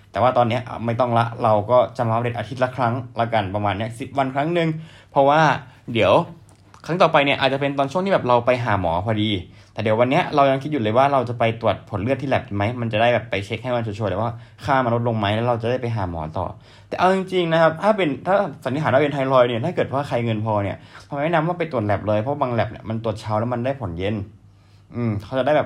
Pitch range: 105-130 Hz